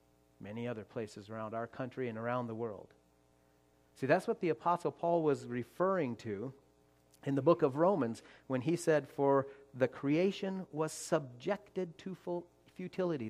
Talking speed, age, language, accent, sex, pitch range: 155 wpm, 40-59, English, American, male, 95-160 Hz